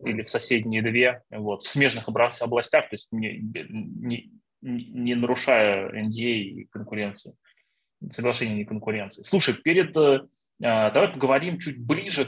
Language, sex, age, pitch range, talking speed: Russian, male, 20-39, 115-145 Hz, 125 wpm